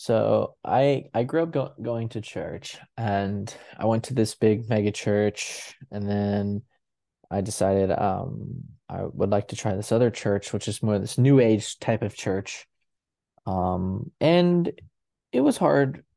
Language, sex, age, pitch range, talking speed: English, male, 20-39, 100-125 Hz, 165 wpm